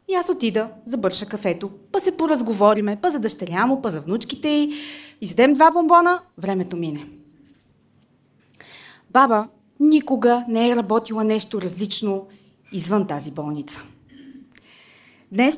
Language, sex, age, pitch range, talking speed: Bulgarian, female, 20-39, 200-285 Hz, 125 wpm